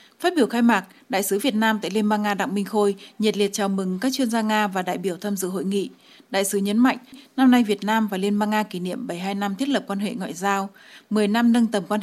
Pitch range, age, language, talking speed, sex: 200-240 Hz, 20-39, Vietnamese, 285 wpm, female